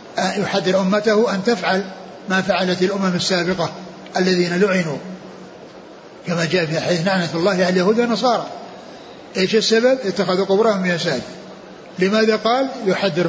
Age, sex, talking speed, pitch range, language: 60-79, male, 125 wpm, 180-220 Hz, Arabic